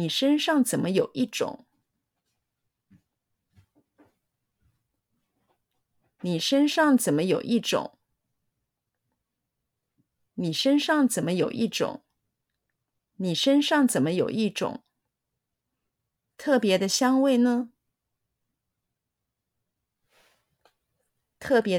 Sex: female